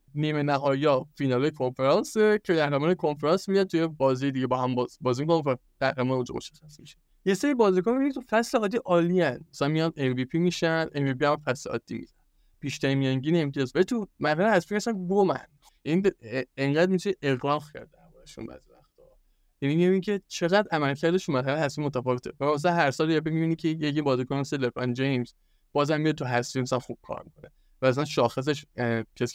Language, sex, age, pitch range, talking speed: Persian, male, 20-39, 130-170 Hz, 145 wpm